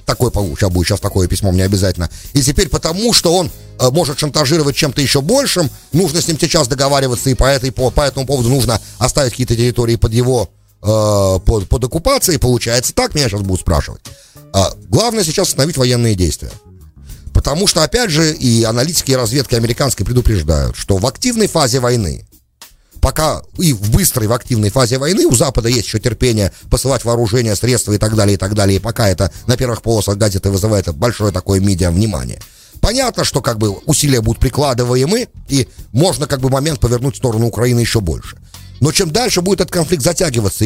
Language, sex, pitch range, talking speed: English, male, 105-145 Hz, 185 wpm